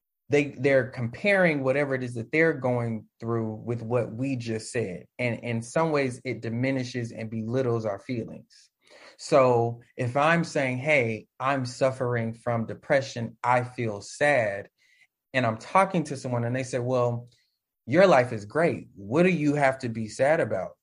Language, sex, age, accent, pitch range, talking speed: English, male, 20-39, American, 115-140 Hz, 165 wpm